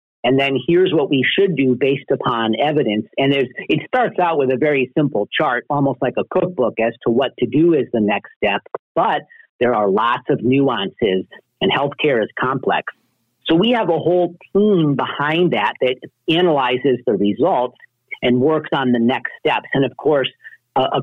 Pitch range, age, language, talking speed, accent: 120-160 Hz, 50-69, English, 190 wpm, American